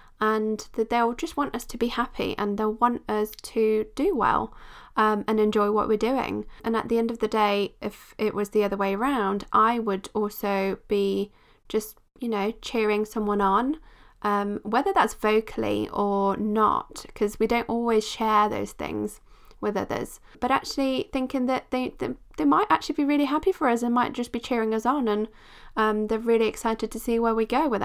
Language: English